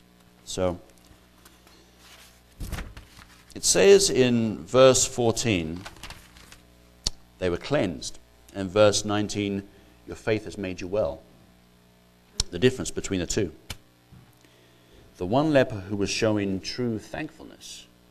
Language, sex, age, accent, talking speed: English, male, 50-69, British, 105 wpm